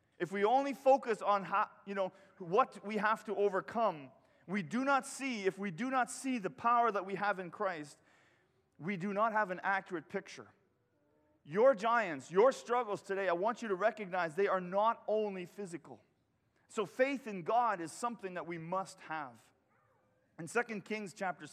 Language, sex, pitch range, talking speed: English, male, 175-225 Hz, 180 wpm